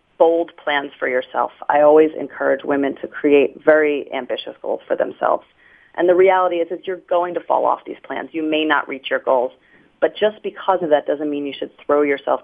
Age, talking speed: 30-49, 210 wpm